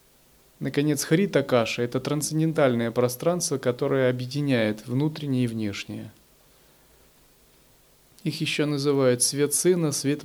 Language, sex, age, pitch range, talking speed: Russian, male, 30-49, 125-160 Hz, 105 wpm